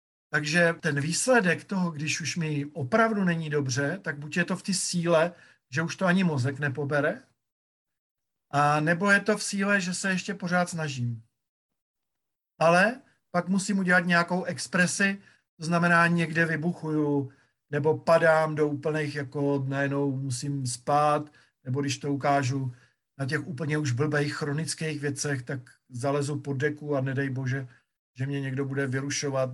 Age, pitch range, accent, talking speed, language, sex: 50-69, 135-175 Hz, native, 150 wpm, Czech, male